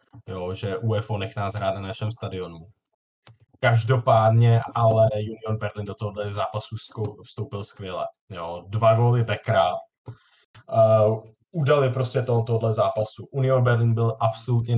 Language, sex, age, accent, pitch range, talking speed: English, male, 20-39, Czech, 110-120 Hz, 125 wpm